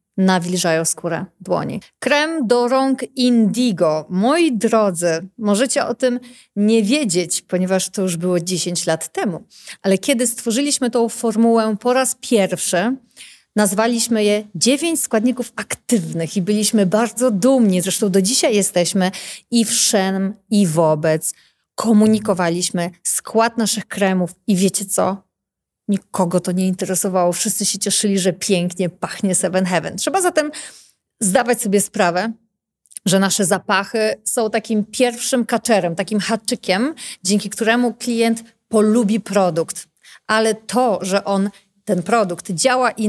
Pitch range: 190-235 Hz